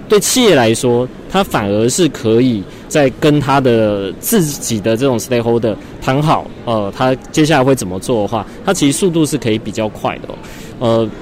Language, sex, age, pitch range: Chinese, male, 20-39, 115-150 Hz